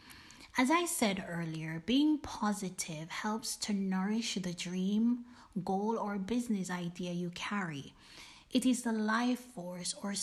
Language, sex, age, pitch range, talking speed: English, female, 20-39, 180-235 Hz, 135 wpm